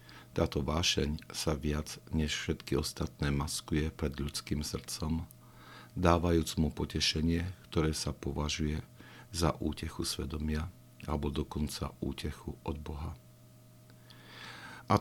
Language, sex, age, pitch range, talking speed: Slovak, male, 50-69, 70-85 Hz, 105 wpm